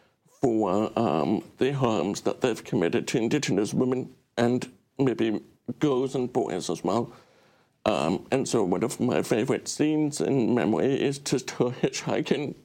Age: 60-79